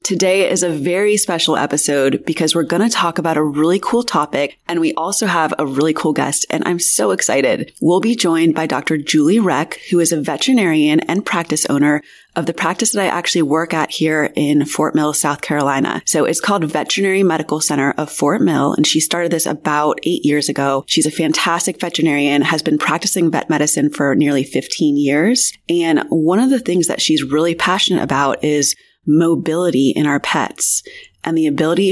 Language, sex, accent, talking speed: English, female, American, 195 wpm